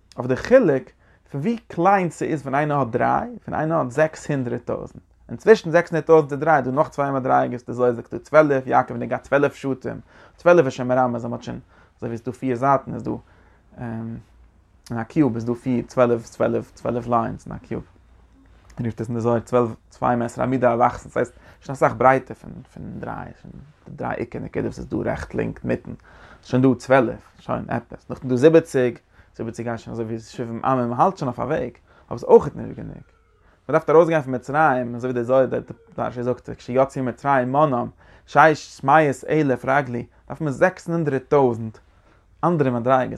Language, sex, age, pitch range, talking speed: English, male, 30-49, 120-155 Hz, 170 wpm